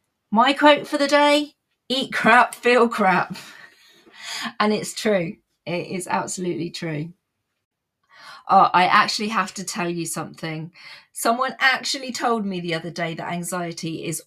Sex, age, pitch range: female, 30-49, 170-240 Hz